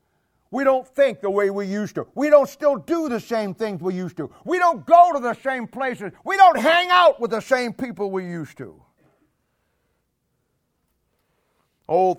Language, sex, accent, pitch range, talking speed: English, male, American, 175-250 Hz, 180 wpm